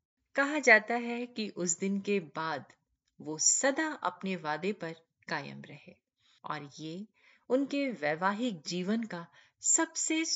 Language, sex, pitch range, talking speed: Hindi, female, 160-250 Hz, 125 wpm